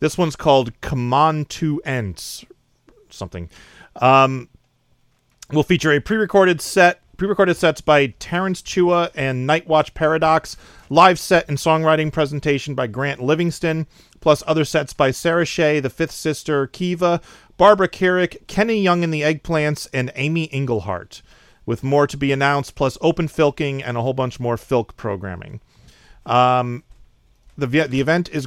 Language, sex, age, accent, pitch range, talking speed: English, male, 40-59, American, 125-155 Hz, 145 wpm